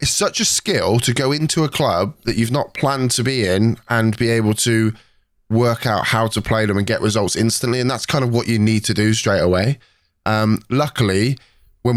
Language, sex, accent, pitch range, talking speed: English, male, British, 100-120 Hz, 220 wpm